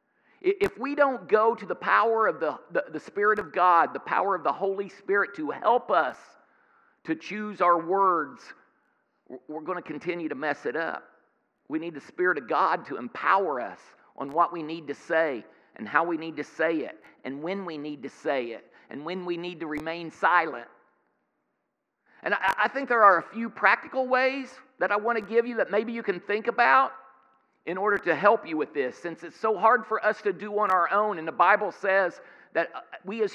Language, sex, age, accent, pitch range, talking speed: English, male, 50-69, American, 160-210 Hz, 210 wpm